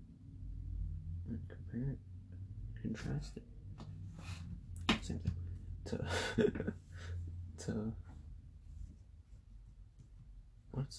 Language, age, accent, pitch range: English, 20-39, American, 90-110 Hz